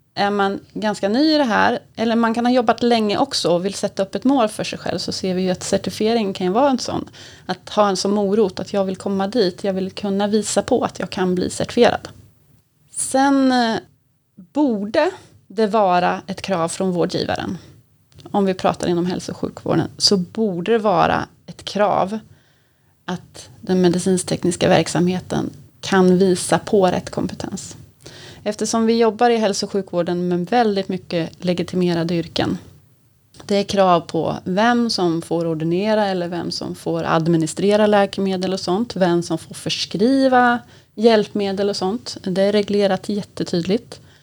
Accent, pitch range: native, 180-215 Hz